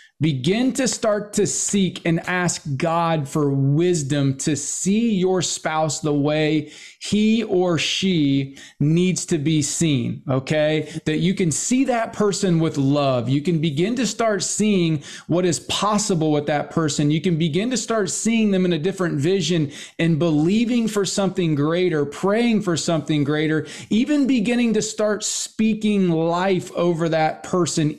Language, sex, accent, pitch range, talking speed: English, male, American, 155-210 Hz, 155 wpm